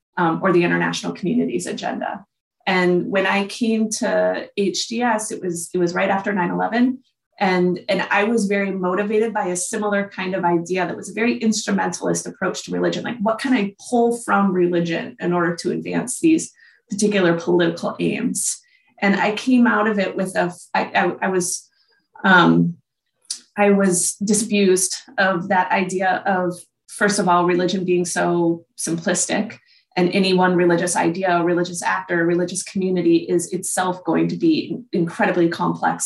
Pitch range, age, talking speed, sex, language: 175-205 Hz, 30-49, 165 wpm, female, English